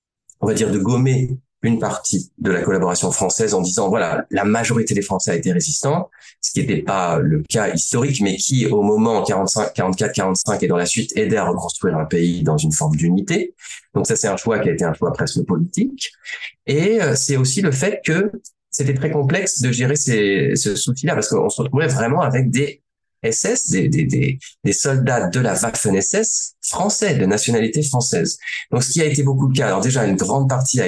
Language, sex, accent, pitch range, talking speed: French, male, French, 100-145 Hz, 205 wpm